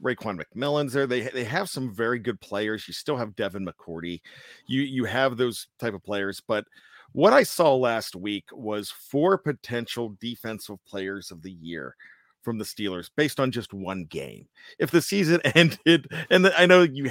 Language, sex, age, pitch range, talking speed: English, male, 40-59, 120-165 Hz, 185 wpm